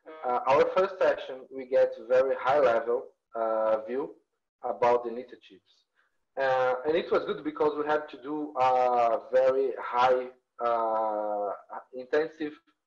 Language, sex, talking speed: Portuguese, male, 135 wpm